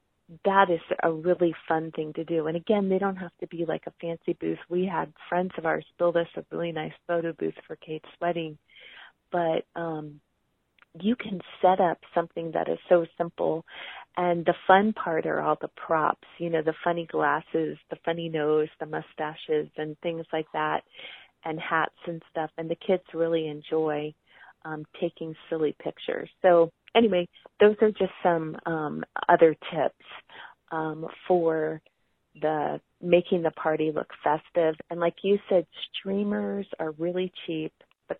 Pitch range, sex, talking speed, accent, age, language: 160-185 Hz, female, 165 wpm, American, 30-49, English